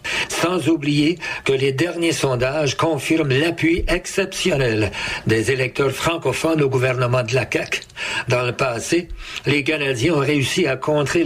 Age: 60-79